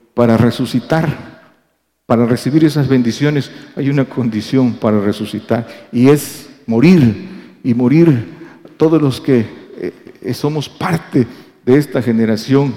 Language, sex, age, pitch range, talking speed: Spanish, male, 50-69, 115-145 Hz, 115 wpm